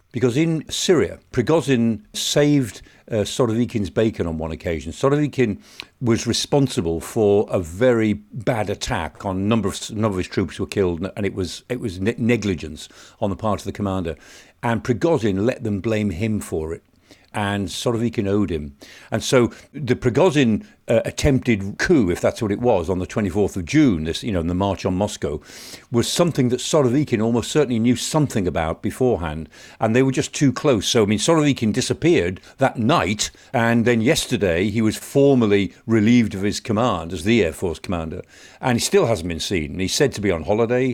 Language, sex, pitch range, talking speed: English, male, 95-125 Hz, 190 wpm